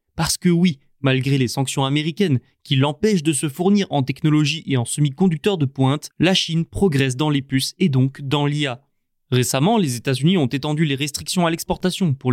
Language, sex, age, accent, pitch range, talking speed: French, male, 20-39, French, 135-180 Hz, 195 wpm